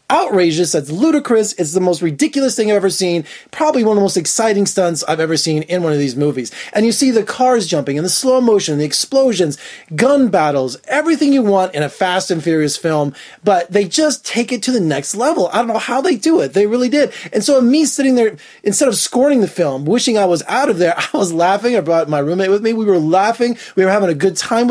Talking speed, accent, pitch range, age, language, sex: 250 wpm, American, 175-255 Hz, 20-39, English, male